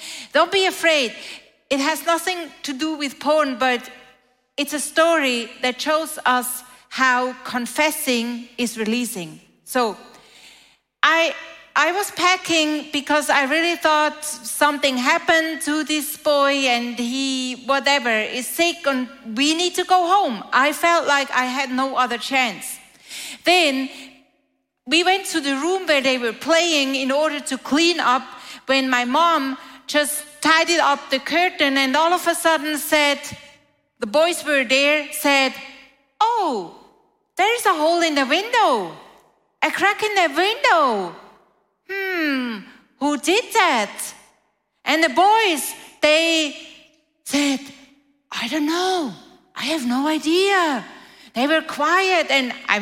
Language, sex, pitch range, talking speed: German, female, 255-325 Hz, 140 wpm